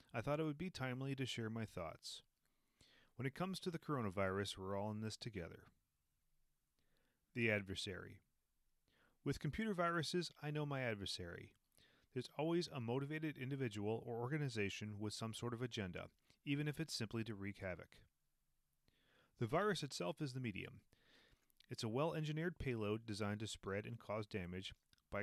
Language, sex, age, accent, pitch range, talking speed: English, male, 30-49, American, 100-135 Hz, 155 wpm